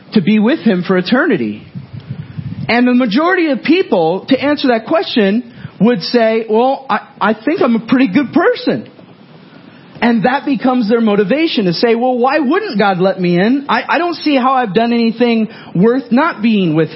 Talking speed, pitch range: 185 wpm, 185-260 Hz